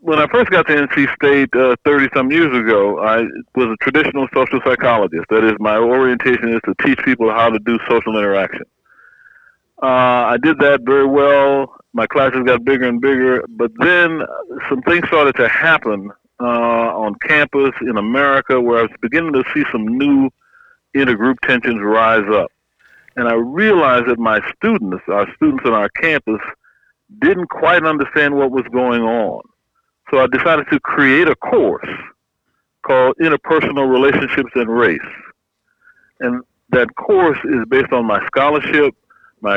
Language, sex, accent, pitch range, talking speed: English, male, American, 115-145 Hz, 160 wpm